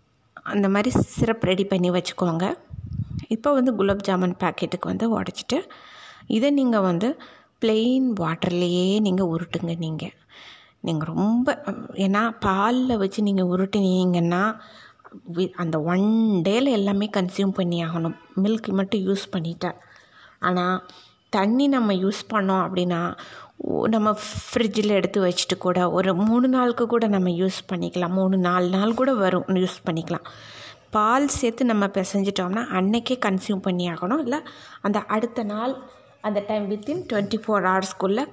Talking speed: 130 wpm